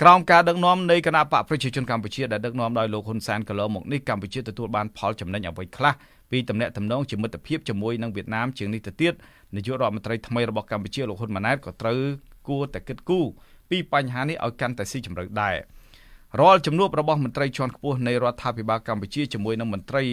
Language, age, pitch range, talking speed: English, 20-39, 110-135 Hz, 40 wpm